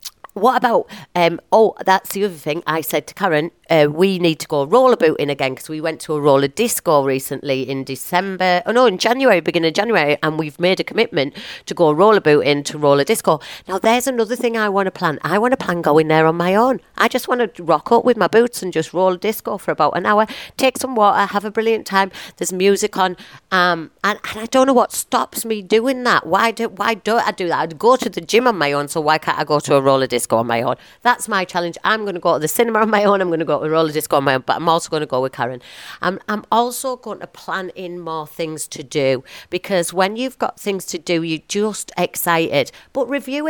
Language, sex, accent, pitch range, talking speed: English, female, British, 155-215 Hz, 260 wpm